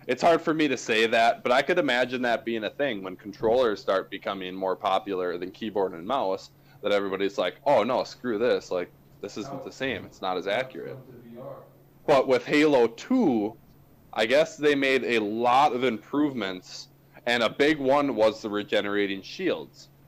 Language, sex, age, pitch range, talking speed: English, male, 20-39, 110-145 Hz, 180 wpm